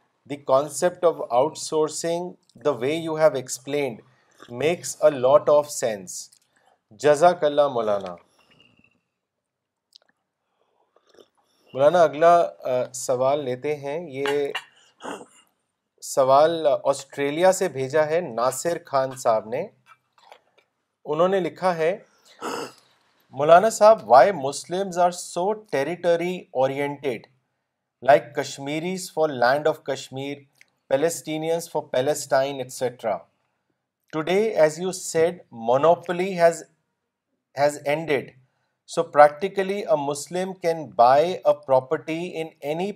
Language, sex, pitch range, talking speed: Urdu, male, 140-175 Hz, 100 wpm